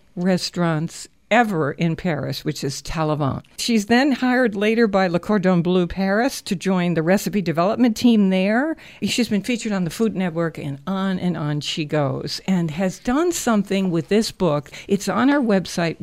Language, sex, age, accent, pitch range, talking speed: English, female, 60-79, American, 170-225 Hz, 175 wpm